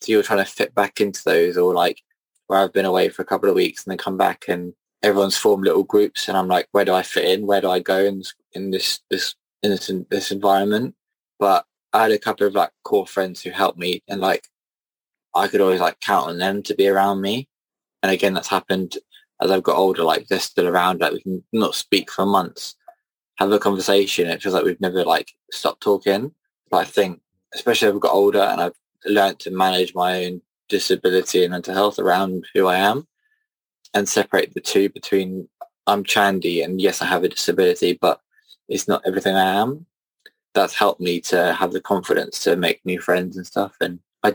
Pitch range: 90-110 Hz